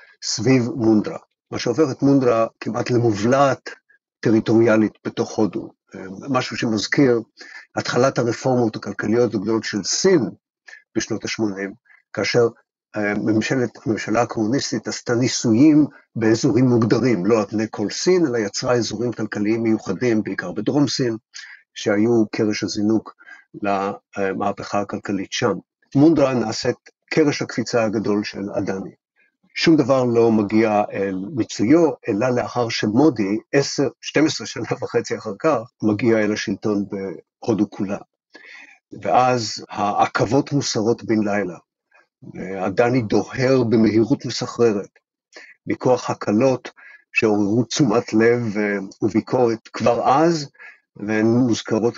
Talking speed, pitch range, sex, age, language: 110 wpm, 105-125 Hz, male, 50-69, Hebrew